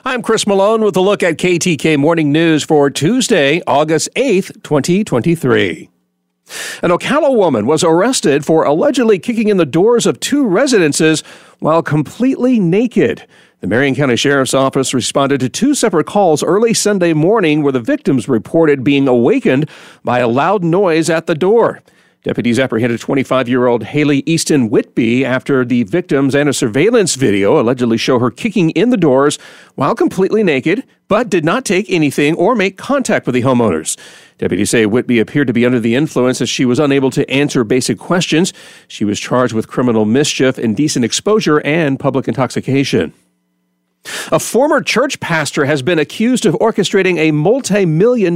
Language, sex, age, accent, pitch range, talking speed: English, male, 50-69, American, 130-190 Hz, 165 wpm